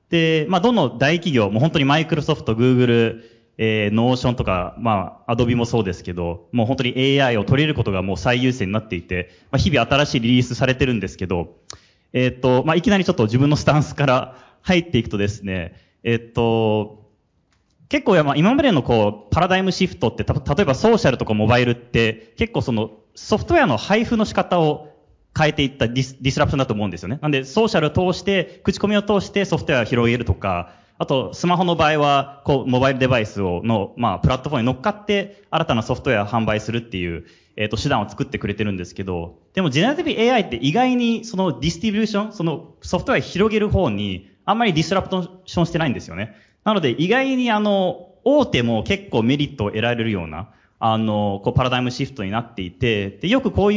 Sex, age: male, 20-39